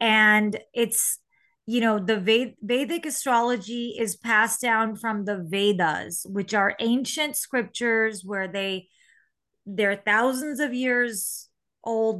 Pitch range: 195-230 Hz